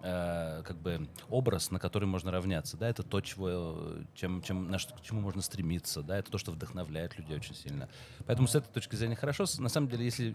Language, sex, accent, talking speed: Russian, male, native, 170 wpm